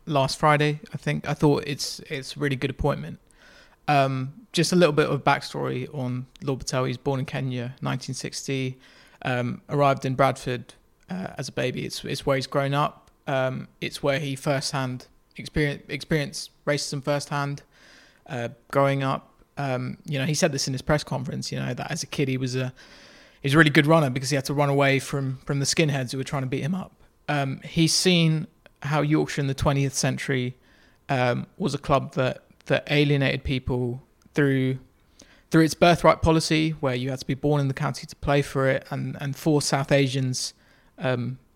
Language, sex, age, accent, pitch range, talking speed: English, male, 20-39, British, 135-155 Hz, 195 wpm